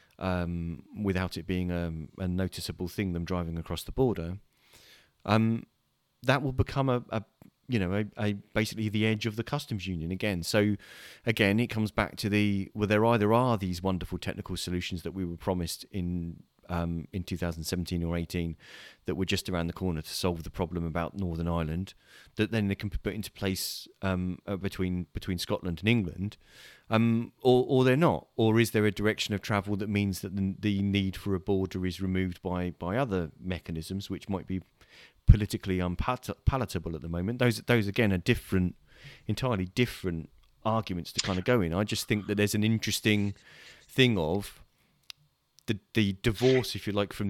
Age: 30-49